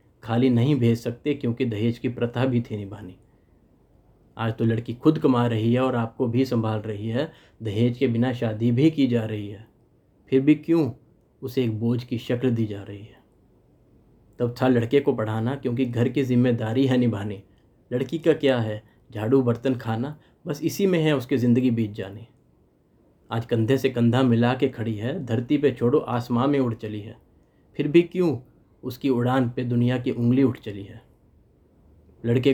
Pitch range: 115-135 Hz